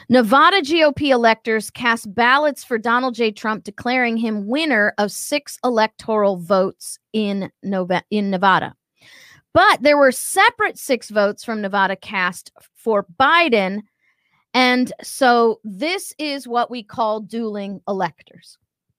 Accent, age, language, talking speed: American, 40-59, English, 125 wpm